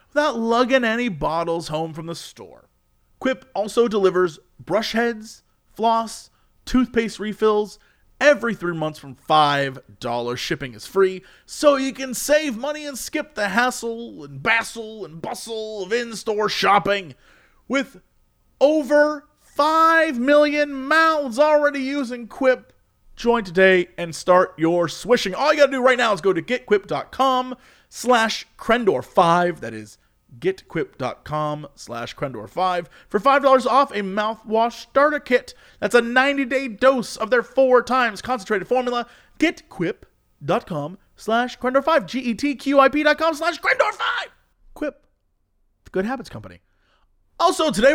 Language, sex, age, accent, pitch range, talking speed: English, male, 30-49, American, 185-275 Hz, 130 wpm